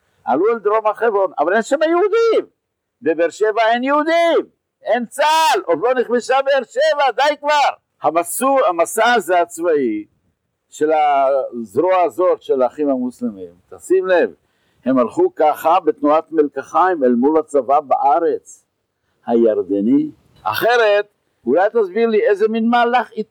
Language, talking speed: Hebrew, 125 wpm